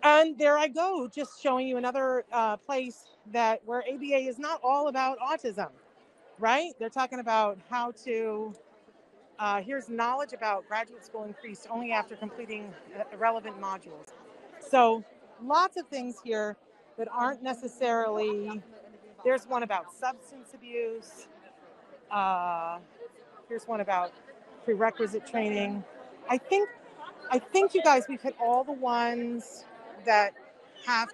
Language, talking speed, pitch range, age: English, 130 wpm, 210-260 Hz, 40-59